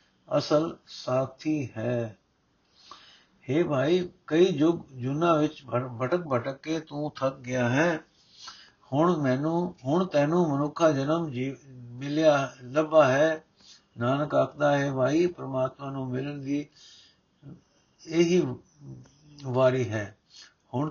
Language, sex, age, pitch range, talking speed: Punjabi, male, 60-79, 130-160 Hz, 105 wpm